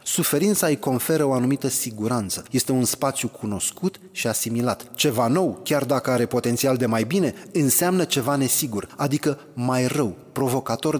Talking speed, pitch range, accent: 155 wpm, 115-140 Hz, native